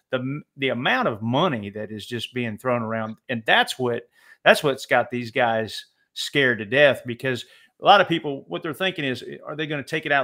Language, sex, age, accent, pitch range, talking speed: English, male, 40-59, American, 120-150 Hz, 225 wpm